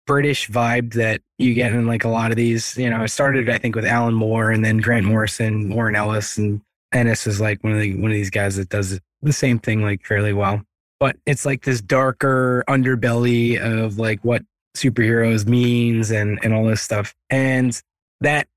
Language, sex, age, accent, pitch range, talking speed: English, male, 20-39, American, 110-140 Hz, 205 wpm